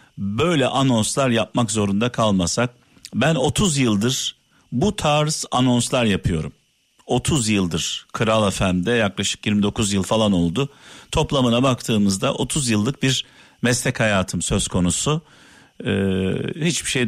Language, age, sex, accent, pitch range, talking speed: Turkish, 50-69, male, native, 100-130 Hz, 115 wpm